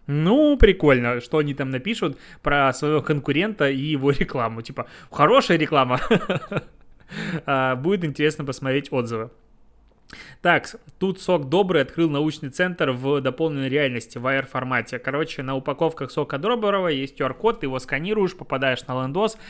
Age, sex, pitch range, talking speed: 20-39, male, 130-160 Hz, 135 wpm